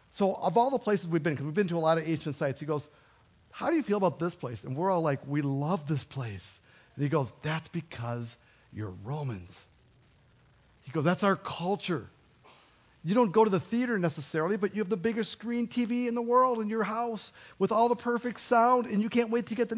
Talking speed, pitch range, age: 235 wpm, 130-200 Hz, 50-69